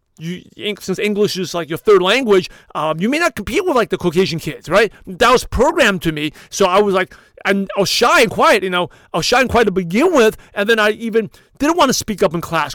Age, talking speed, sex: 40-59, 260 wpm, male